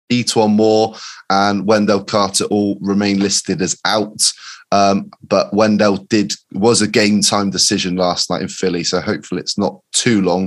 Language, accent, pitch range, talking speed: English, British, 100-120 Hz, 165 wpm